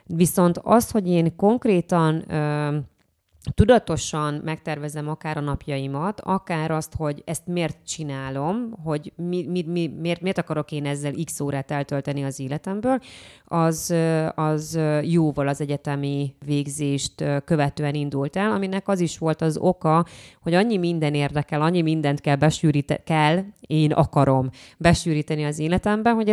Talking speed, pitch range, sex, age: 130 wpm, 145-175 Hz, female, 20-39